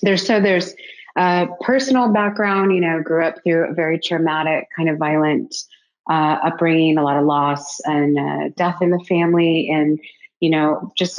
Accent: American